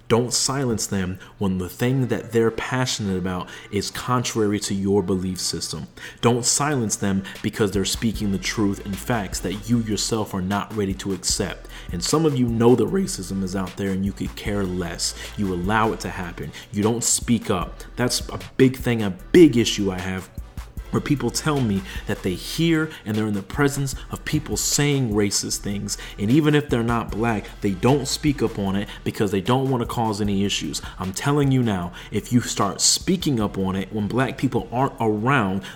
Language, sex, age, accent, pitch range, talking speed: English, male, 30-49, American, 100-125 Hz, 200 wpm